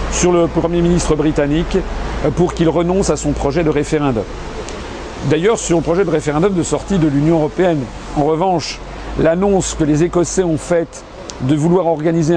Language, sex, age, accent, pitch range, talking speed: French, male, 50-69, French, 140-170 Hz, 170 wpm